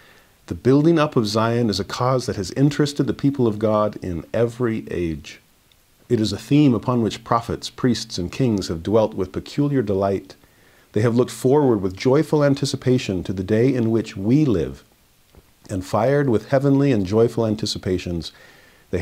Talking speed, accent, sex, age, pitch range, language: 175 wpm, American, male, 50-69, 95-120 Hz, English